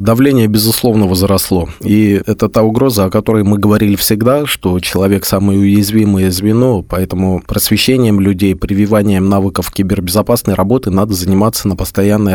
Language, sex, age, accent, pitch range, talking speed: Russian, male, 20-39, native, 95-110 Hz, 135 wpm